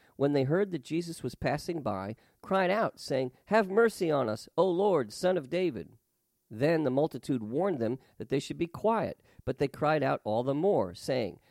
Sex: male